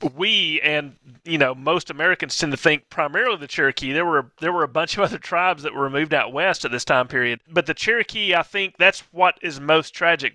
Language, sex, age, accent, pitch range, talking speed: English, male, 30-49, American, 140-175 Hz, 230 wpm